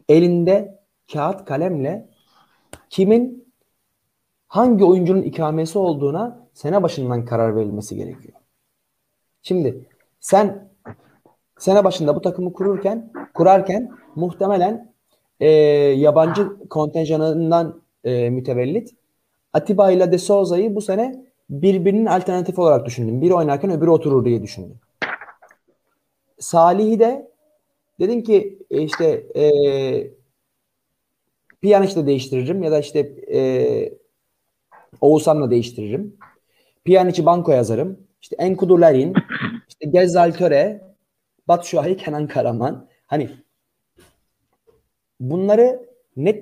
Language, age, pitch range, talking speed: Turkish, 30-49, 155-215 Hz, 90 wpm